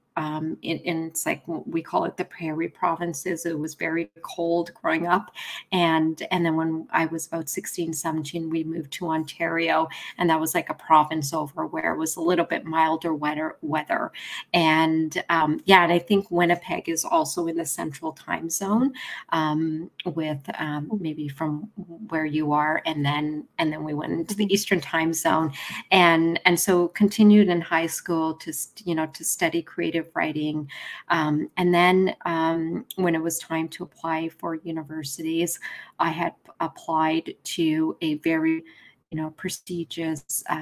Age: 40-59